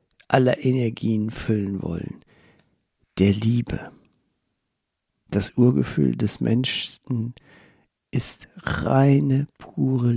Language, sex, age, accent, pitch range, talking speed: German, male, 50-69, German, 105-135 Hz, 75 wpm